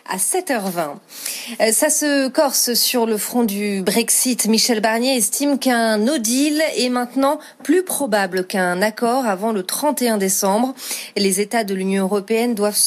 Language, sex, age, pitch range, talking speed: French, female, 30-49, 205-255 Hz, 150 wpm